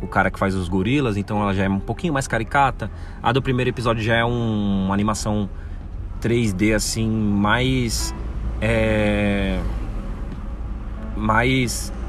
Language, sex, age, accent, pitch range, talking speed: Portuguese, male, 20-39, Brazilian, 95-130 Hz, 135 wpm